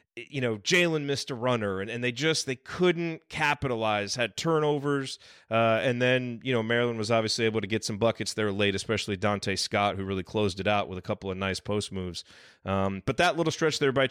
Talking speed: 220 wpm